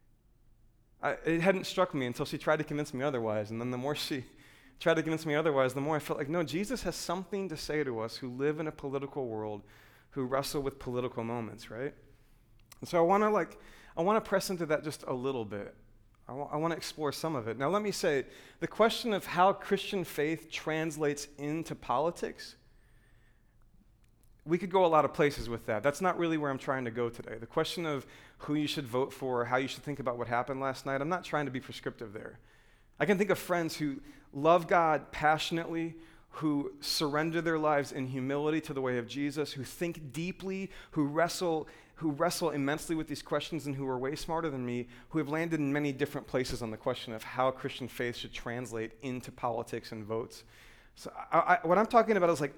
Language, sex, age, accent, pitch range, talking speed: English, male, 30-49, American, 120-160 Hz, 220 wpm